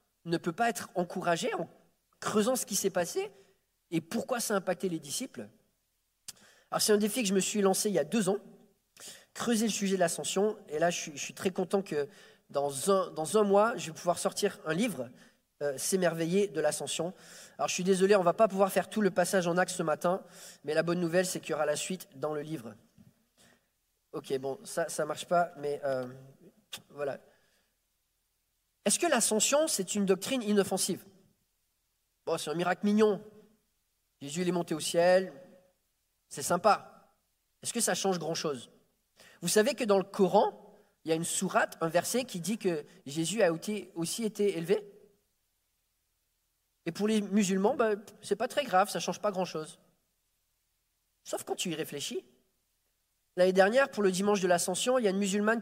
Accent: French